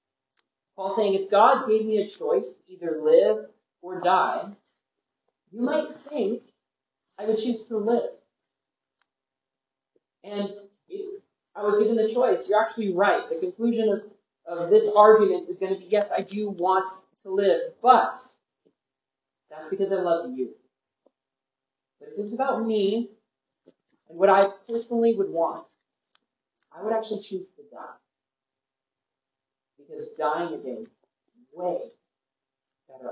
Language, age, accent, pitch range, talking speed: English, 30-49, American, 190-240 Hz, 140 wpm